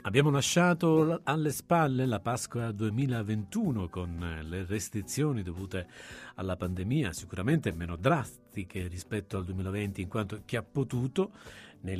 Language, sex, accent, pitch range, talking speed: Italian, male, native, 100-135 Hz, 125 wpm